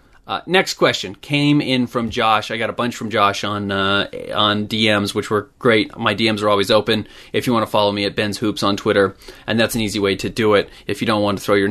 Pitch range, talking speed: 105-125 Hz, 260 wpm